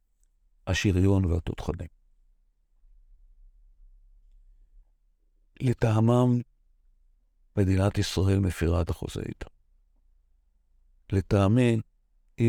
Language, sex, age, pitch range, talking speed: Hebrew, male, 60-79, 70-100 Hz, 55 wpm